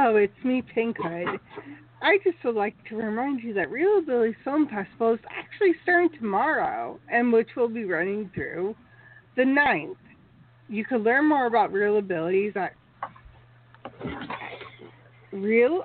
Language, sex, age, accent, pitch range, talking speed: English, female, 40-59, American, 185-245 Hz, 130 wpm